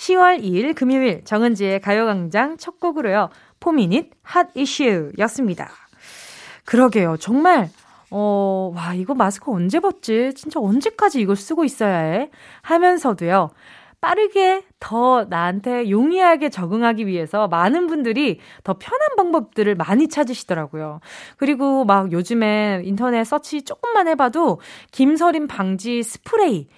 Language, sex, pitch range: Korean, female, 205-310 Hz